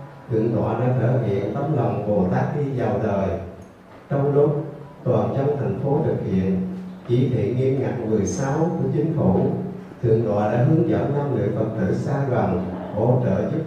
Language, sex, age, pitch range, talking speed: Vietnamese, male, 30-49, 100-145 Hz, 185 wpm